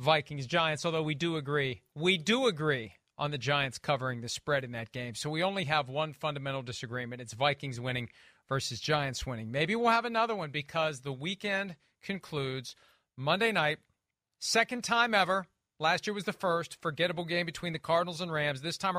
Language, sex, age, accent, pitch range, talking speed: English, male, 40-59, American, 150-190 Hz, 185 wpm